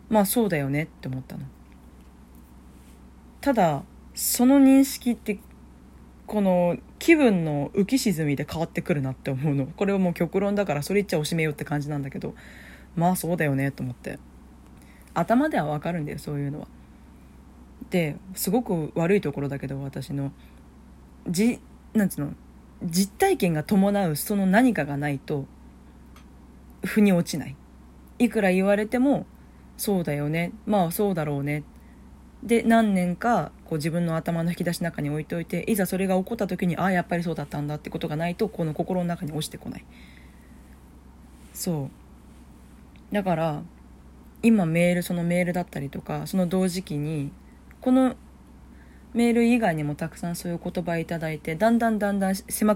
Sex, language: female, Japanese